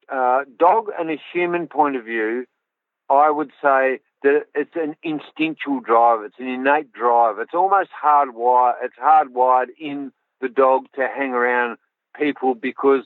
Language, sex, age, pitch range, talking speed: English, male, 50-69, 130-170 Hz, 150 wpm